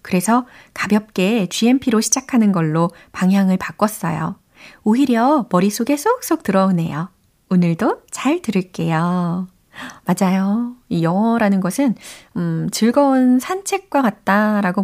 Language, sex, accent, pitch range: Korean, female, native, 175-235 Hz